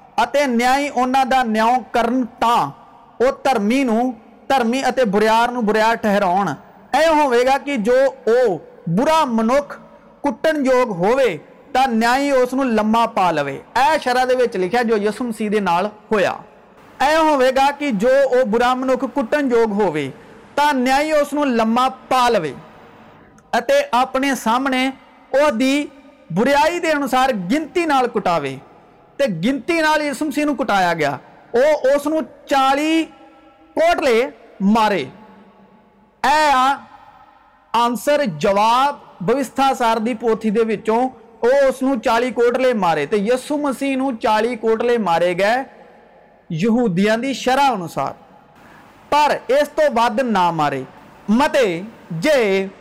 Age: 50-69